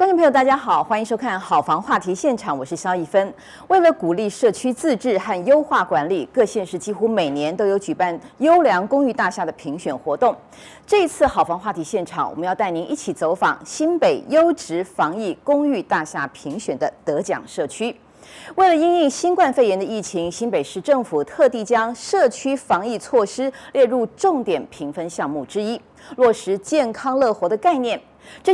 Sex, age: female, 30-49